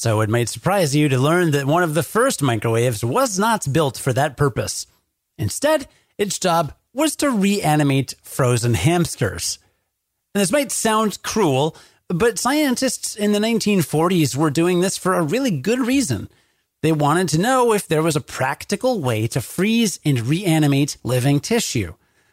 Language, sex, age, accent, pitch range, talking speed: English, male, 30-49, American, 125-195 Hz, 165 wpm